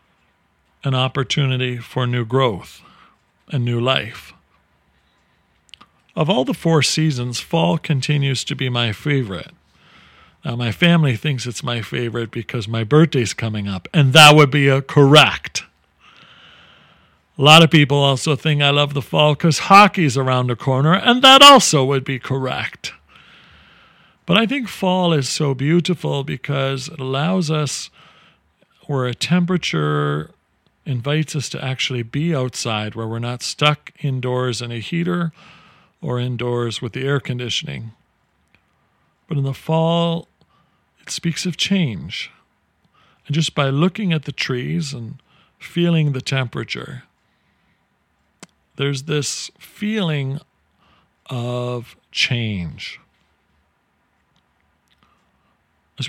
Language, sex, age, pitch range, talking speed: English, male, 50-69, 120-160 Hz, 125 wpm